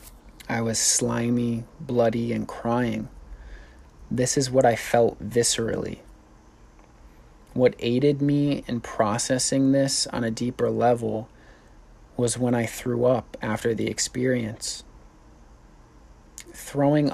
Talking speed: 110 wpm